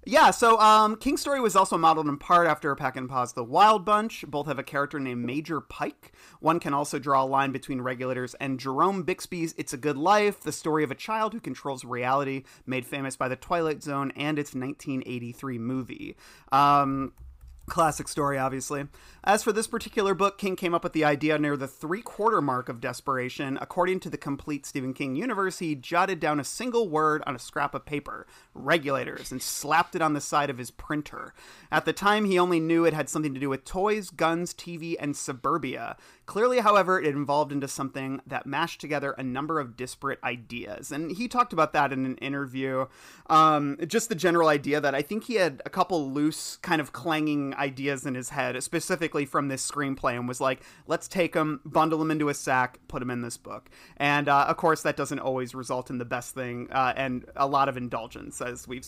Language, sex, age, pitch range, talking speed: English, male, 30-49, 135-165 Hz, 210 wpm